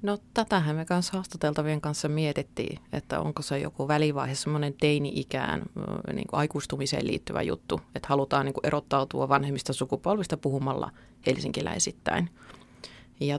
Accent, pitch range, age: native, 140-180 Hz, 30-49